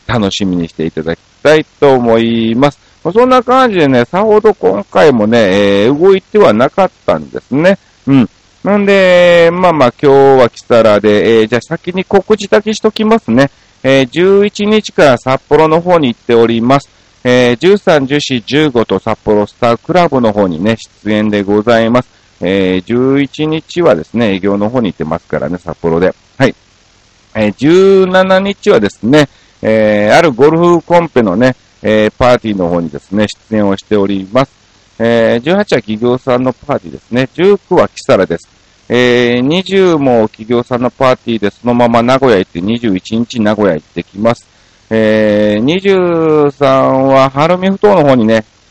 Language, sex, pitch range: Japanese, male, 105-170 Hz